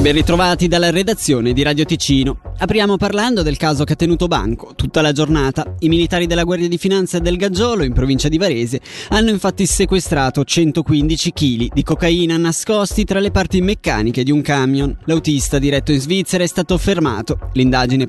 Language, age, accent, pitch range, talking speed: Italian, 20-39, native, 145-180 Hz, 175 wpm